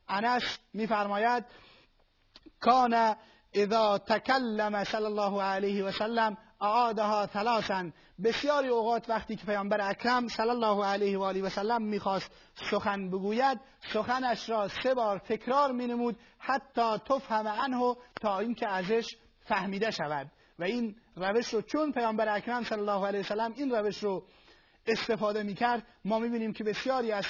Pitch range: 200-235 Hz